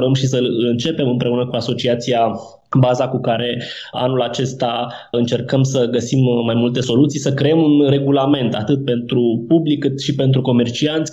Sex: male